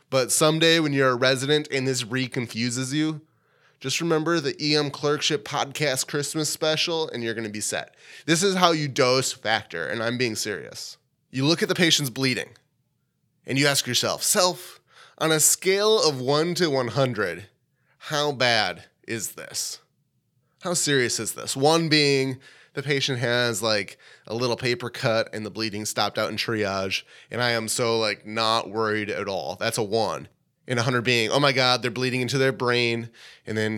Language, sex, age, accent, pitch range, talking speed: English, male, 20-39, American, 115-145 Hz, 180 wpm